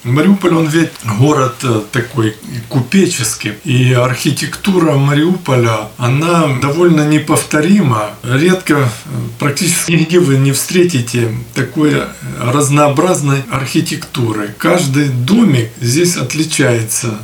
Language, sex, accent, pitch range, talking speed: Ukrainian, male, native, 115-150 Hz, 85 wpm